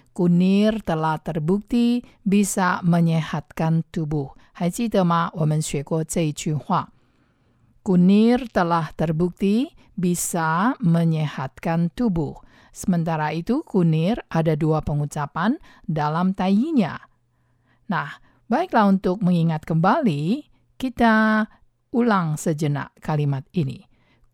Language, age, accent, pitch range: Chinese, 50-69, Indonesian, 155-205 Hz